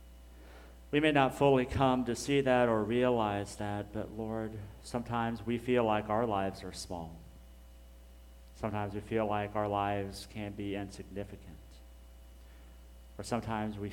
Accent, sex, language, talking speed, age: American, male, English, 140 wpm, 50-69